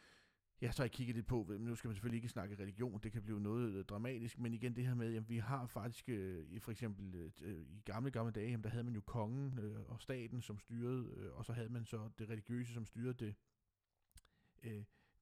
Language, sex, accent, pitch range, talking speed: Danish, male, native, 110-140 Hz, 240 wpm